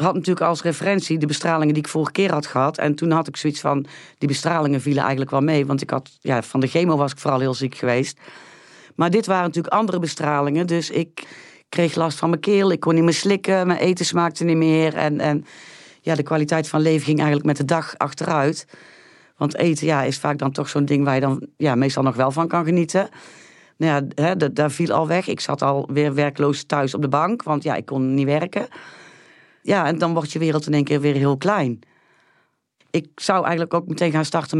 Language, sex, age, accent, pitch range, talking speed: Dutch, female, 40-59, Dutch, 145-170 Hz, 220 wpm